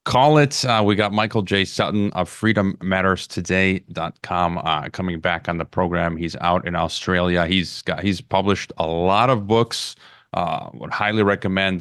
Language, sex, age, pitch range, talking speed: English, male, 30-49, 85-100 Hz, 165 wpm